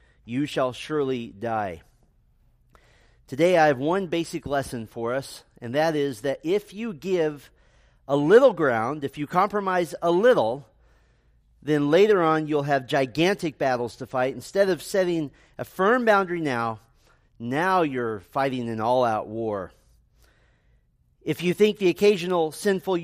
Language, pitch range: English, 125-175 Hz